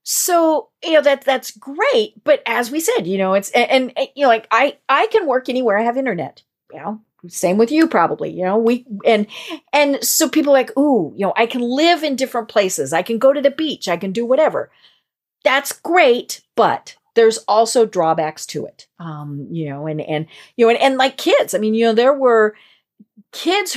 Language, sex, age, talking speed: English, female, 50-69, 220 wpm